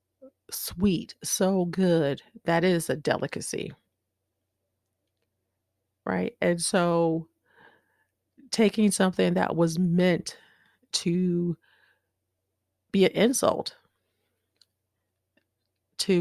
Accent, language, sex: American, English, female